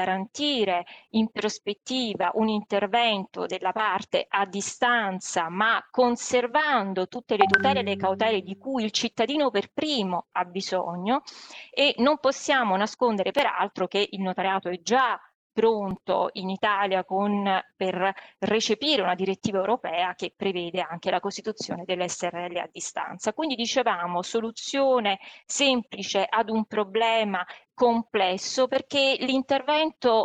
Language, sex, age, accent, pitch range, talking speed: Italian, female, 20-39, native, 190-245 Hz, 125 wpm